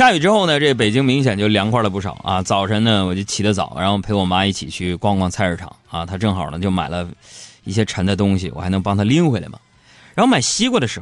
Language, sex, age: Chinese, male, 20-39